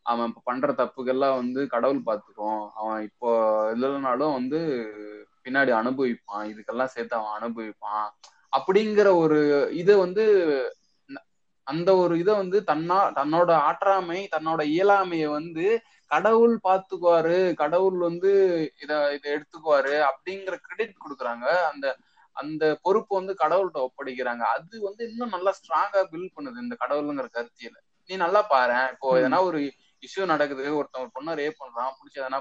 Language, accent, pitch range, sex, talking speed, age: Tamil, native, 130-190 Hz, male, 120 wpm, 20-39